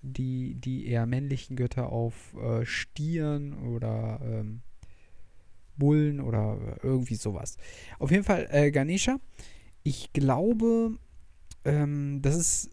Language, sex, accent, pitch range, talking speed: German, male, German, 125-170 Hz, 105 wpm